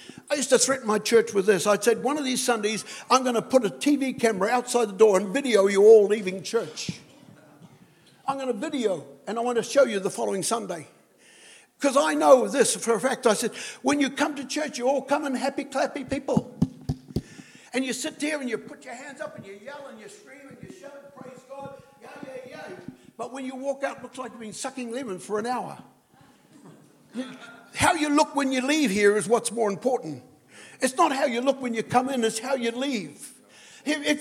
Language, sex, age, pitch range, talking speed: English, male, 60-79, 210-270 Hz, 230 wpm